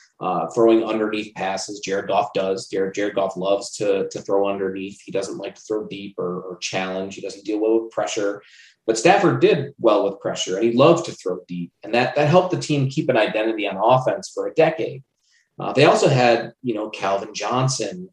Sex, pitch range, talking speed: male, 100-130 Hz, 210 wpm